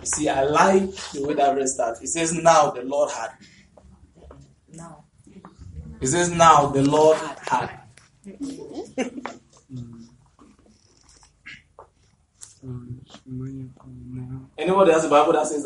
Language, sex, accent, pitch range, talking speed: English, male, Nigerian, 95-150 Hz, 110 wpm